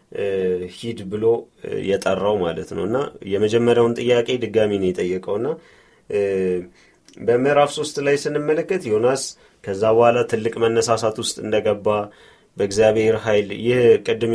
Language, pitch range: Amharic, 105-130 Hz